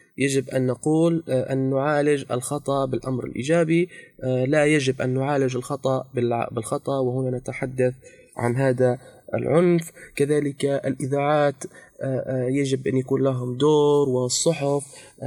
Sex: male